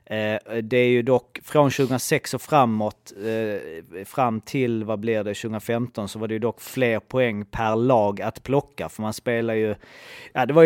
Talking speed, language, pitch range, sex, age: 190 wpm, Swedish, 115-145 Hz, male, 30-49